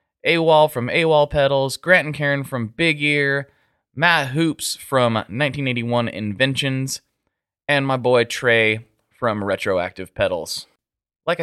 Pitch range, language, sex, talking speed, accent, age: 110-145 Hz, English, male, 120 wpm, American, 20-39